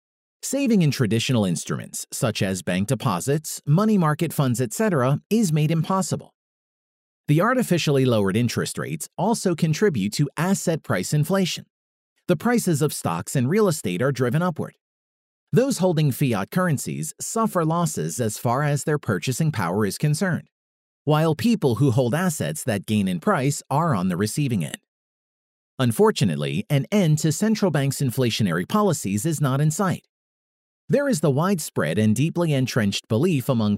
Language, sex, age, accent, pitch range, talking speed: English, male, 40-59, American, 130-185 Hz, 150 wpm